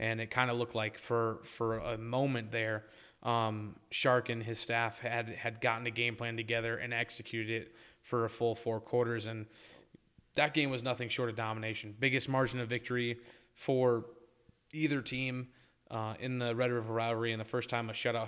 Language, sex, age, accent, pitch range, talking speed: English, male, 20-39, American, 115-125 Hz, 190 wpm